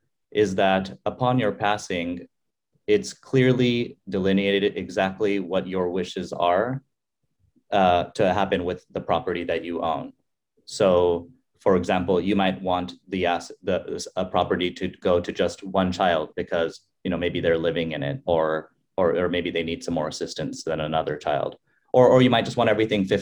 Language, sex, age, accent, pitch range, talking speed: English, male, 30-49, American, 85-100 Hz, 170 wpm